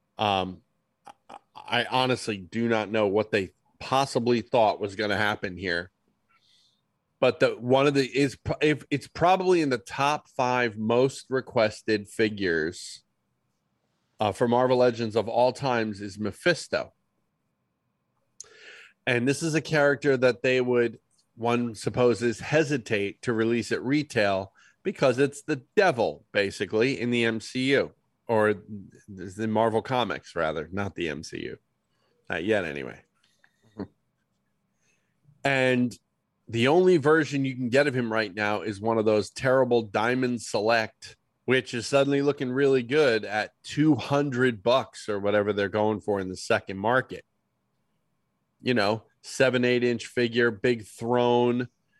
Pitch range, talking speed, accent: 110-135 Hz, 135 wpm, American